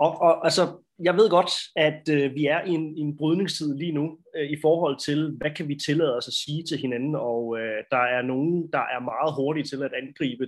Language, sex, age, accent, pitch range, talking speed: Danish, male, 20-39, native, 130-165 Hz, 240 wpm